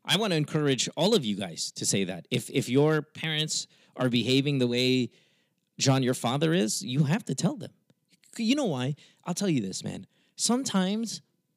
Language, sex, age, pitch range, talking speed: English, male, 30-49, 130-185 Hz, 190 wpm